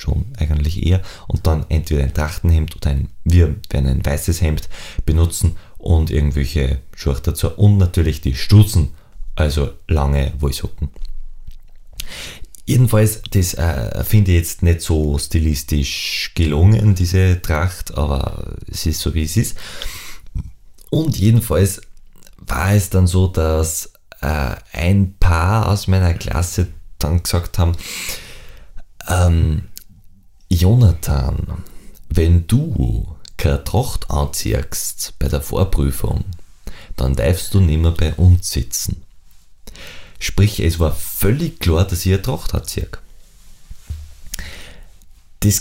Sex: male